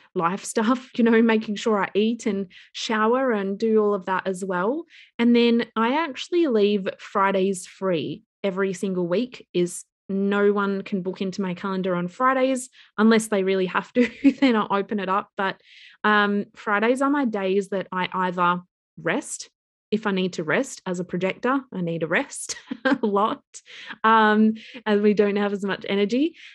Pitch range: 190-235 Hz